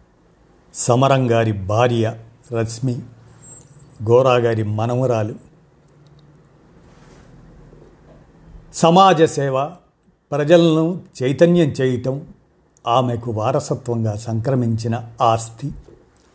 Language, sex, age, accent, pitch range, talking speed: Telugu, male, 50-69, native, 120-160 Hz, 50 wpm